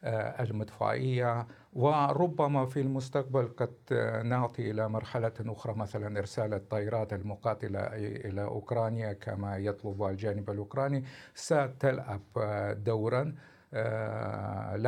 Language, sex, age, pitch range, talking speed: Arabic, male, 50-69, 105-130 Hz, 90 wpm